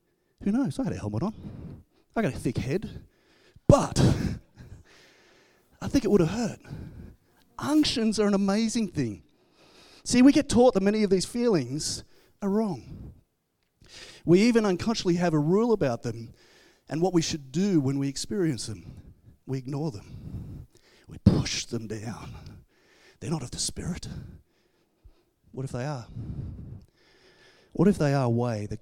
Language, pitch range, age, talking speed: English, 120-175 Hz, 30-49, 155 wpm